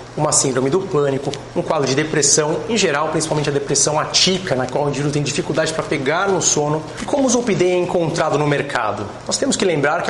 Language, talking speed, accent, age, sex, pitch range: Portuguese, 220 wpm, Brazilian, 30-49, male, 140-185 Hz